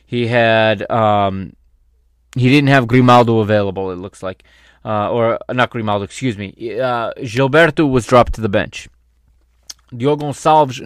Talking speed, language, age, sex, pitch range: 150 wpm, English, 20-39, male, 100-125 Hz